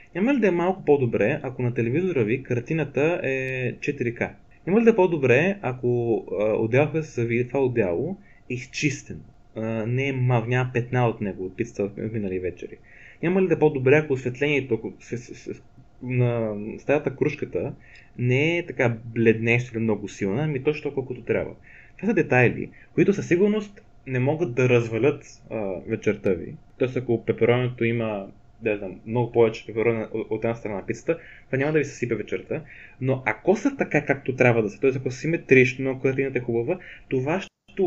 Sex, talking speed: male, 185 wpm